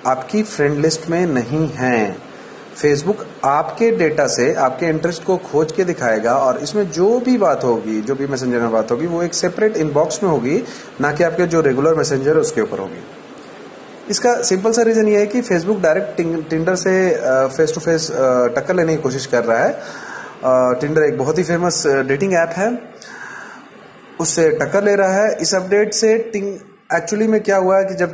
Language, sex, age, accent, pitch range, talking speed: Hindi, male, 30-49, native, 145-200 Hz, 190 wpm